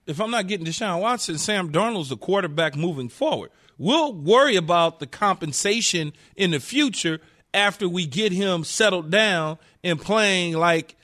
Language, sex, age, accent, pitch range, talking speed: English, male, 40-59, American, 185-270 Hz, 160 wpm